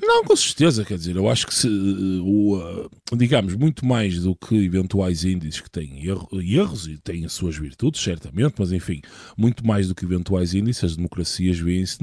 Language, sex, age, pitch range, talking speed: Portuguese, male, 20-39, 95-125 Hz, 175 wpm